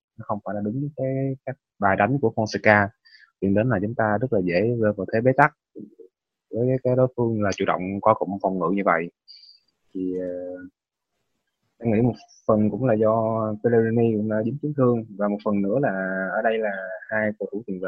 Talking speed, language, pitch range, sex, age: 215 wpm, Vietnamese, 100-115 Hz, male, 20-39